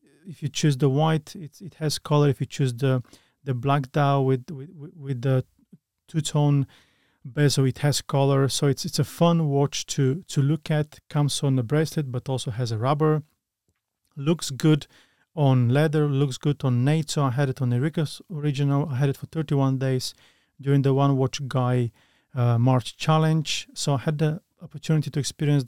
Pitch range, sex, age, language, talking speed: 130-150 Hz, male, 30-49, English, 190 wpm